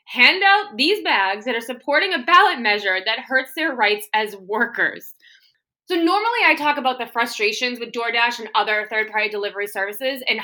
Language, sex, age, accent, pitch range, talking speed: English, female, 20-39, American, 225-355 Hz, 185 wpm